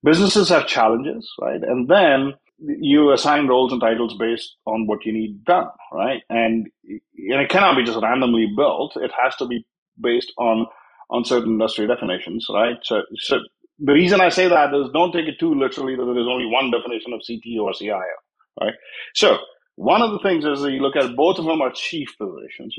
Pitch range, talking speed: 115-155 Hz, 195 wpm